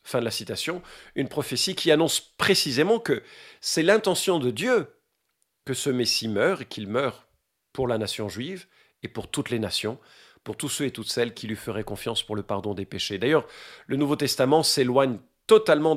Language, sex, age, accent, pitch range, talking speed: French, male, 50-69, French, 110-155 Hz, 190 wpm